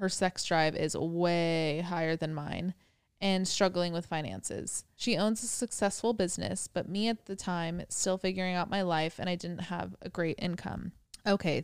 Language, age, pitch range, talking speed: English, 20-39, 170-195 Hz, 180 wpm